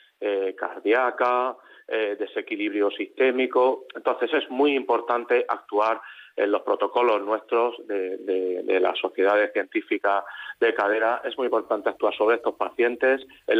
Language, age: Spanish, 40-59